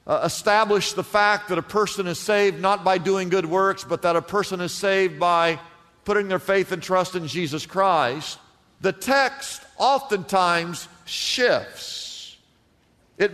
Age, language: 50-69, English